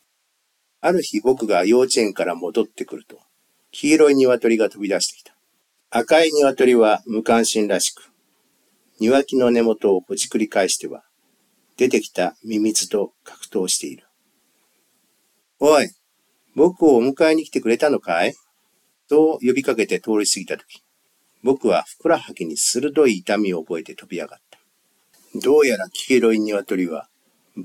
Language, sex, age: Japanese, male, 50-69